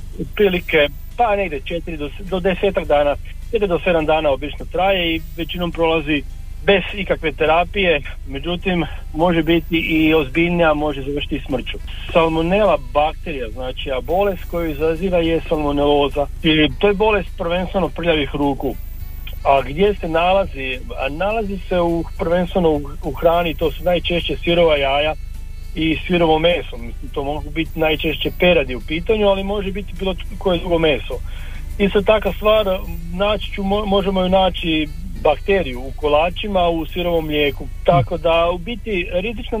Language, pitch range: Croatian, 150-185 Hz